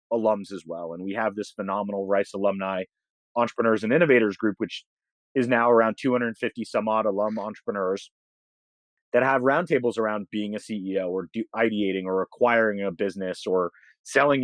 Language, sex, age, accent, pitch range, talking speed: English, male, 30-49, American, 100-120 Hz, 160 wpm